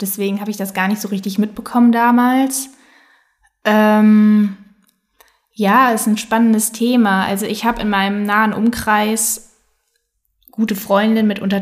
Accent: German